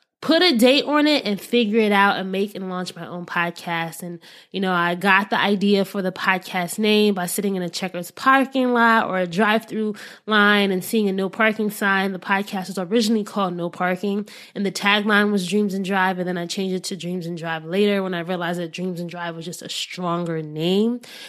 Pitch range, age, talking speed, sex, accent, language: 180-220 Hz, 20-39, 225 wpm, female, American, English